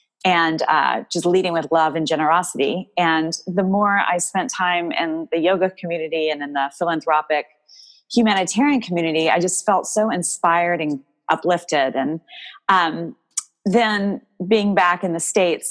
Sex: female